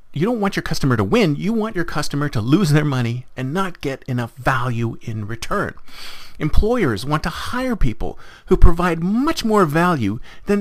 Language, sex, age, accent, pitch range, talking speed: English, male, 40-59, American, 135-210 Hz, 185 wpm